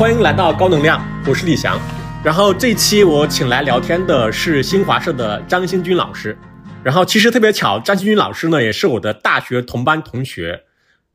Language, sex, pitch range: Chinese, male, 125-195 Hz